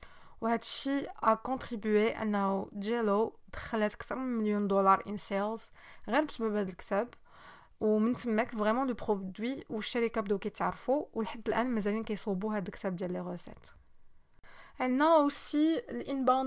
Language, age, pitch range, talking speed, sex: Arabic, 20-39, 210-245 Hz, 165 wpm, female